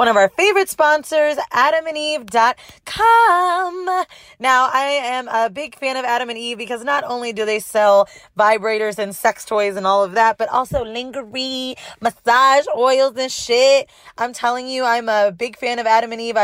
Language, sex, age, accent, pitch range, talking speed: English, female, 20-39, American, 215-265 Hz, 175 wpm